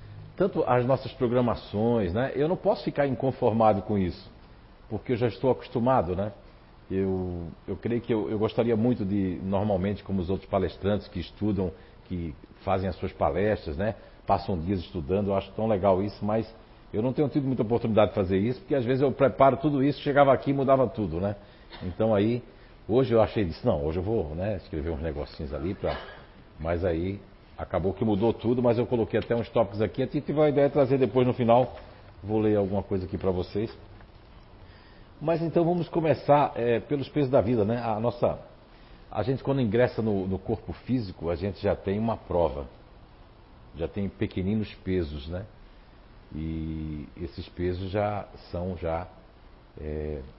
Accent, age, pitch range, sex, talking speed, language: Brazilian, 60-79, 95-125 Hz, male, 180 wpm, Portuguese